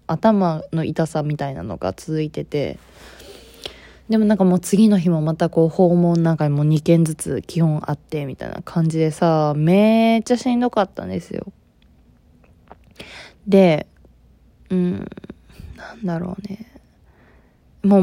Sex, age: female, 20-39